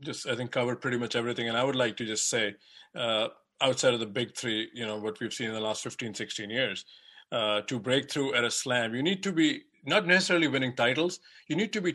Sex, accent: male, Indian